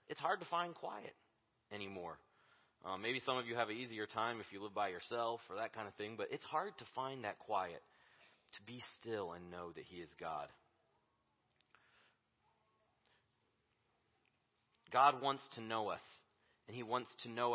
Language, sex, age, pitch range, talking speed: English, male, 30-49, 110-140 Hz, 175 wpm